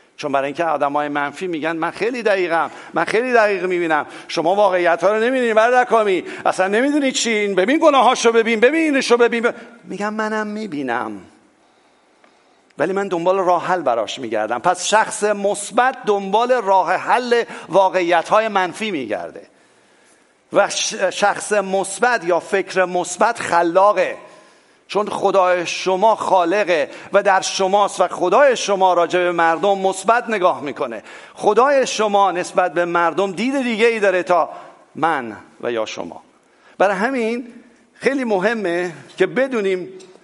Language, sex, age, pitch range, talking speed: English, male, 50-69, 180-225 Hz, 135 wpm